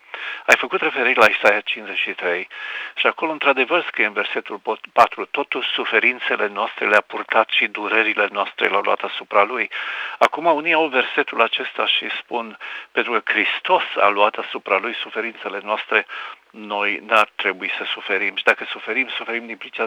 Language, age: Romanian, 50-69